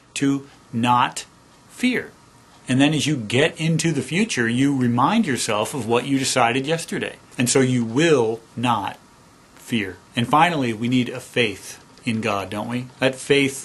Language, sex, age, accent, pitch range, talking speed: English, male, 40-59, American, 115-145 Hz, 165 wpm